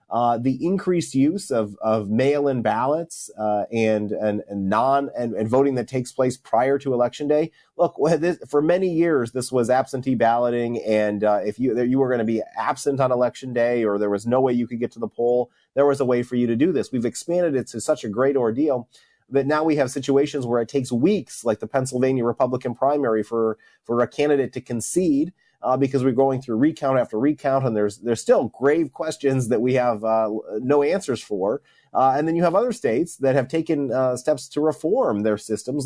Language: English